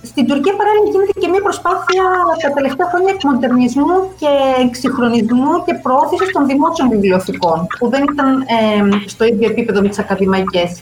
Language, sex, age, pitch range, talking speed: Greek, female, 30-49, 220-310 Hz, 155 wpm